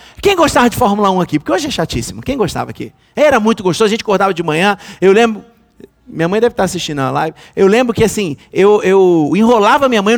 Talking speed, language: 235 wpm, Portuguese